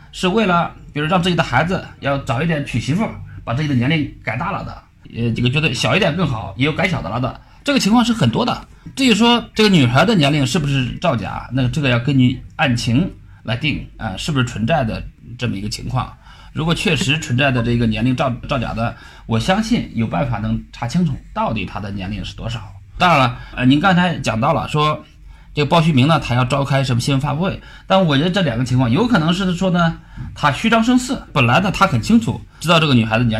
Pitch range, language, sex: 115-165 Hz, Chinese, male